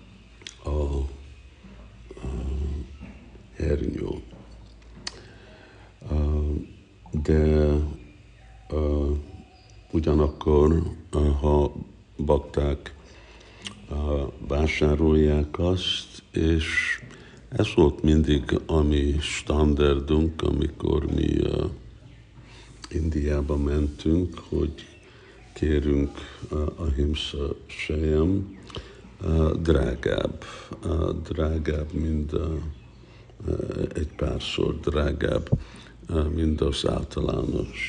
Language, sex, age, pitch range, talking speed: Hungarian, male, 60-79, 70-85 Hz, 75 wpm